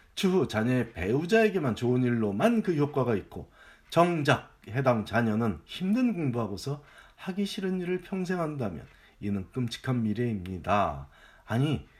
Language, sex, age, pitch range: Korean, male, 40-59, 105-160 Hz